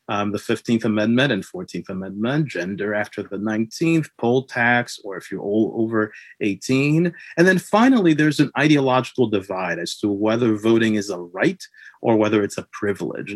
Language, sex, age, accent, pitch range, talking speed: English, male, 30-49, American, 110-145 Hz, 170 wpm